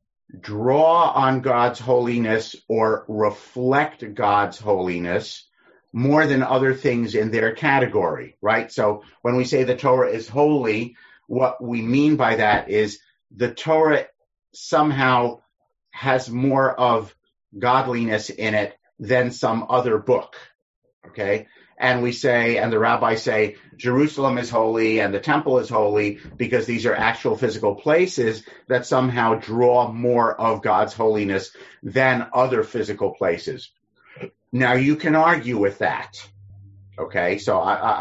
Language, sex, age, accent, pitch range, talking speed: English, male, 50-69, American, 105-130 Hz, 135 wpm